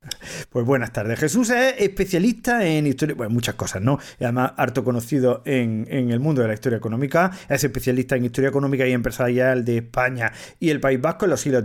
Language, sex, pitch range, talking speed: Spanish, male, 125-160 Hz, 200 wpm